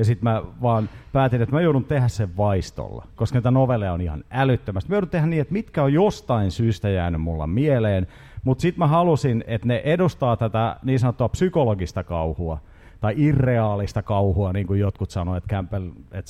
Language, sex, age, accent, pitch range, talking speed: Finnish, male, 40-59, native, 95-130 Hz, 185 wpm